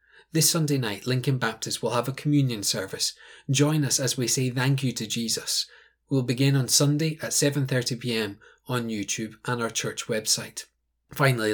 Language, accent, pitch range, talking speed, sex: English, British, 115-145 Hz, 170 wpm, male